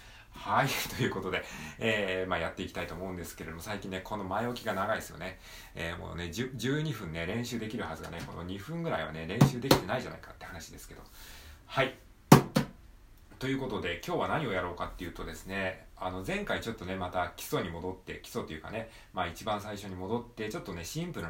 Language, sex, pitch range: Japanese, male, 85-115 Hz